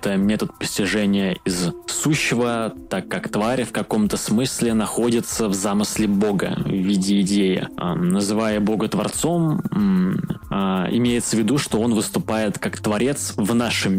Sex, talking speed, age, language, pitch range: male, 135 wpm, 20-39, Russian, 100-120 Hz